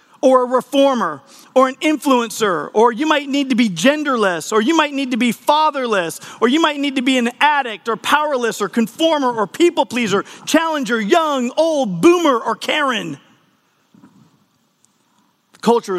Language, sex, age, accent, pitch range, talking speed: English, male, 40-59, American, 185-260 Hz, 160 wpm